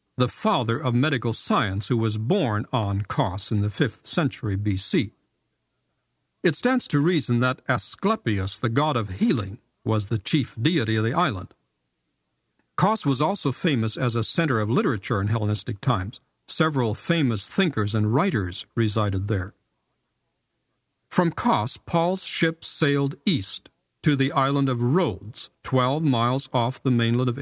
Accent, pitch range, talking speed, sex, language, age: American, 110-150 Hz, 150 wpm, male, English, 50-69